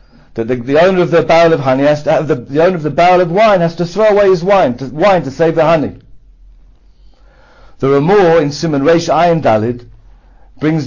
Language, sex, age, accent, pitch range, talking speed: English, male, 50-69, British, 115-170 Hz, 220 wpm